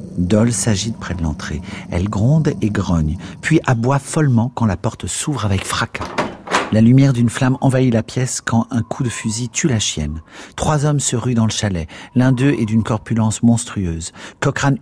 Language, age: French, 50-69